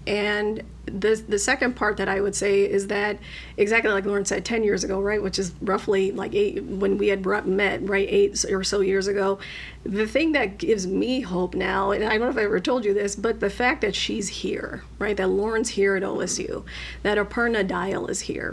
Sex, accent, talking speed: female, American, 220 wpm